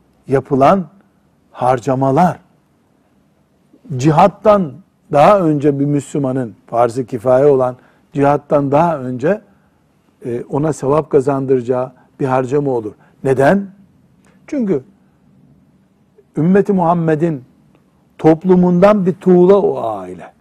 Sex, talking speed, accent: male, 80 wpm, native